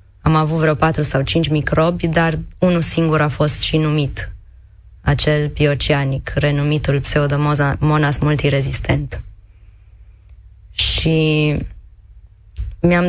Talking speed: 95 wpm